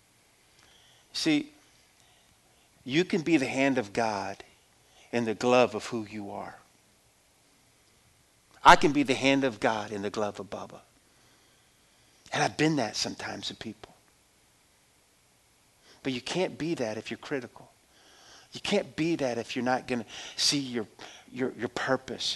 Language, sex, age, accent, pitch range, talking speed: English, male, 50-69, American, 120-155 Hz, 150 wpm